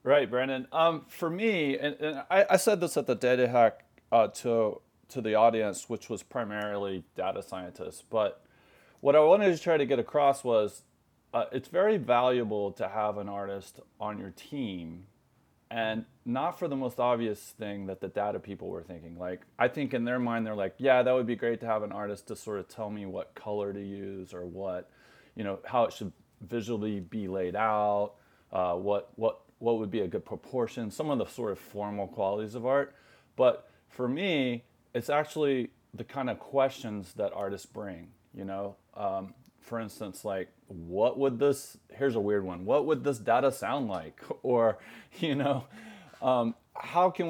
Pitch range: 105-135 Hz